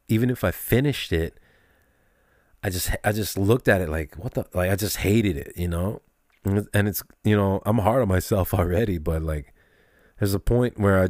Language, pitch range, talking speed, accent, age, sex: English, 90-110 Hz, 205 wpm, American, 30-49, male